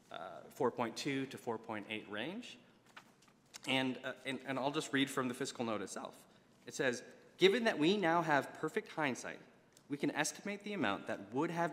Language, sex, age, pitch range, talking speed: English, male, 20-39, 110-145 Hz, 165 wpm